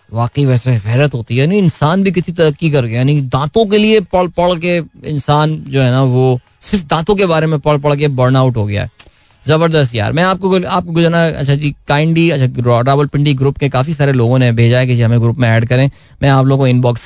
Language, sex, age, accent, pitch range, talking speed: Hindi, male, 20-39, native, 130-170 Hz, 155 wpm